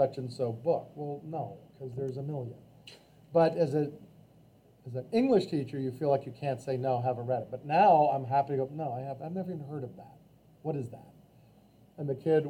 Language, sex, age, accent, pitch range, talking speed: English, male, 40-59, American, 130-165 Hz, 235 wpm